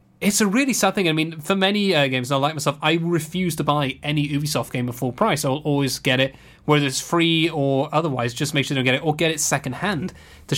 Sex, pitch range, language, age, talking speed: male, 135-165 Hz, English, 20-39, 255 wpm